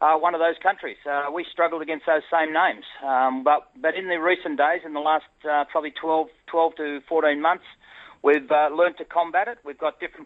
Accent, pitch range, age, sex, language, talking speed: Australian, 140-160 Hz, 40-59, male, English, 220 wpm